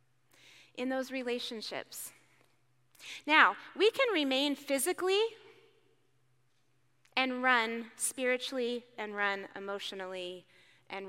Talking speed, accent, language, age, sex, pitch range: 80 wpm, American, English, 30-49, female, 185-245 Hz